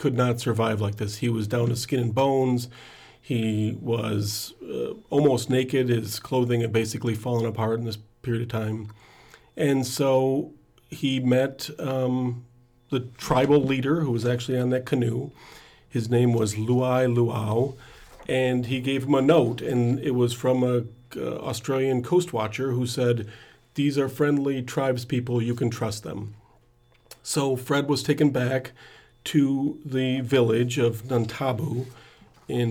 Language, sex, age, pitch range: English, male, 40-59, 120-135 Hz